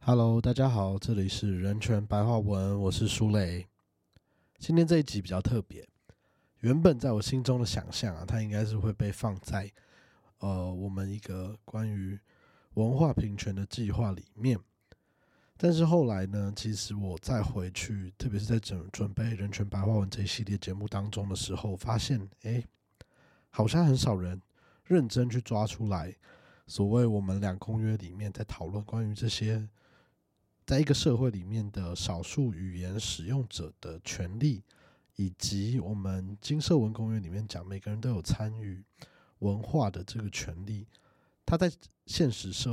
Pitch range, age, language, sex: 100-120 Hz, 20-39, Chinese, male